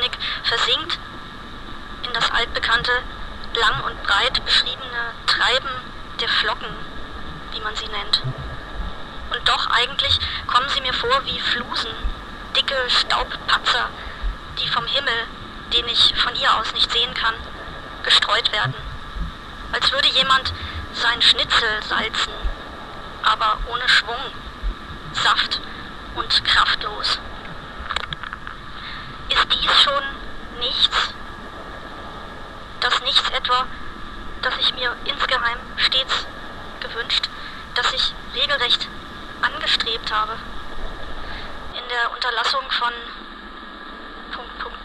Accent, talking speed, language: German, 100 wpm, Hebrew